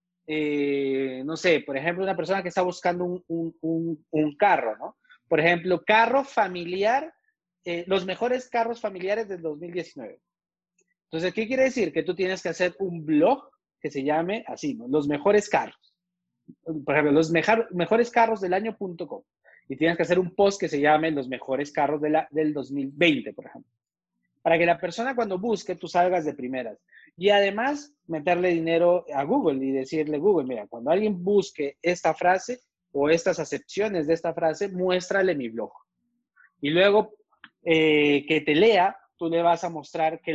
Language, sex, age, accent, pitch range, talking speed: Spanish, male, 30-49, Mexican, 150-195 Hz, 175 wpm